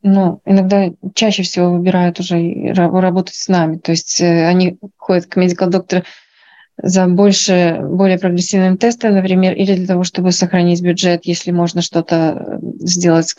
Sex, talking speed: female, 140 wpm